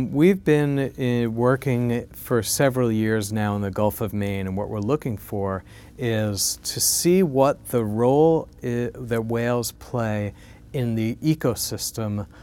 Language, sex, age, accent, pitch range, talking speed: English, male, 40-59, American, 105-125 Hz, 145 wpm